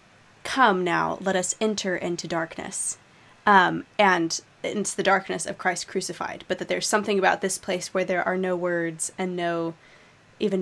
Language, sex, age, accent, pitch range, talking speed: English, female, 20-39, American, 175-215 Hz, 170 wpm